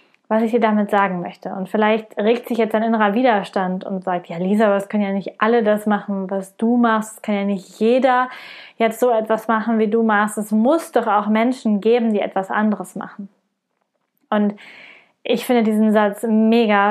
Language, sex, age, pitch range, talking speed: German, female, 20-39, 200-235 Hz, 200 wpm